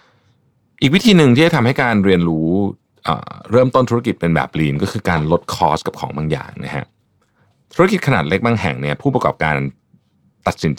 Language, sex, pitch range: Thai, male, 80-115 Hz